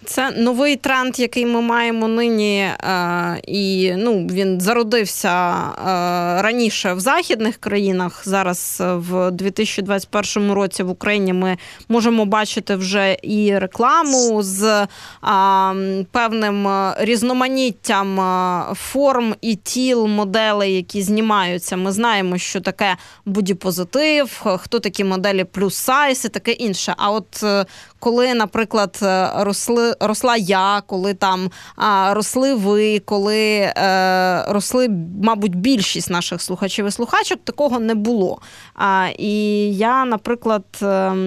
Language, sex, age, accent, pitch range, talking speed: Ukrainian, female, 20-39, native, 190-230 Hz, 110 wpm